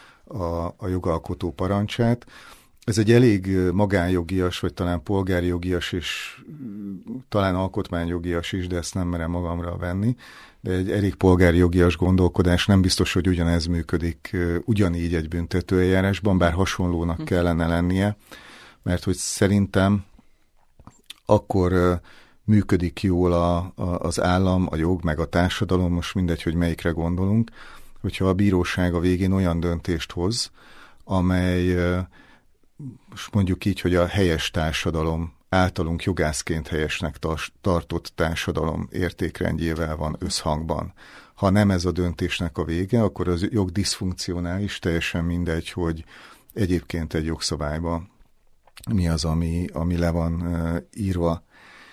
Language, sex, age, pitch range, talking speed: Hungarian, male, 40-59, 85-95 Hz, 120 wpm